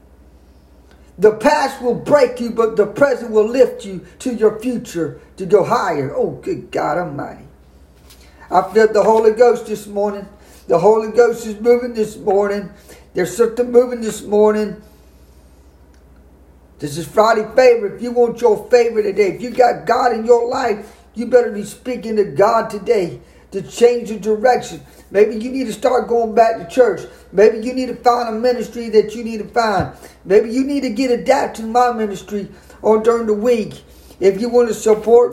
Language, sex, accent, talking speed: English, male, American, 180 wpm